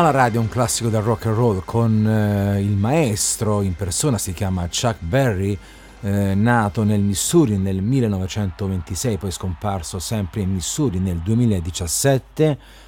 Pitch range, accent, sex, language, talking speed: 95-115 Hz, native, male, Italian, 150 wpm